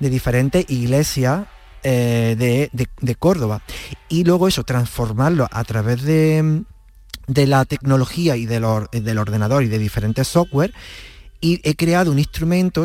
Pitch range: 120-150 Hz